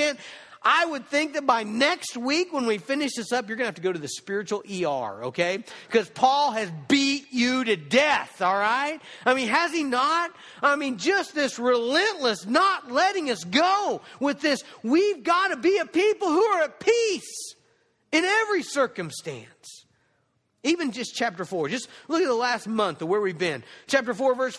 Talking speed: 190 wpm